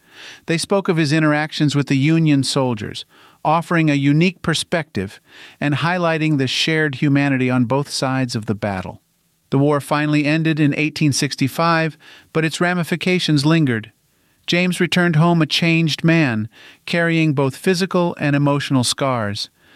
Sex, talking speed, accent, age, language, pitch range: male, 140 wpm, American, 50-69, English, 130-160 Hz